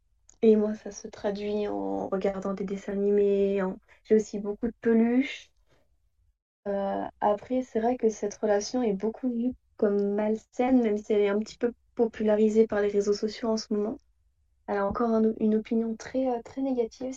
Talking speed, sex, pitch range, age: 180 wpm, female, 200-230 Hz, 20-39